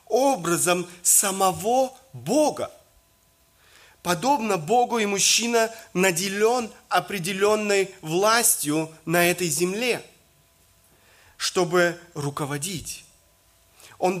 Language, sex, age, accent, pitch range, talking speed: Russian, male, 30-49, native, 155-210 Hz, 70 wpm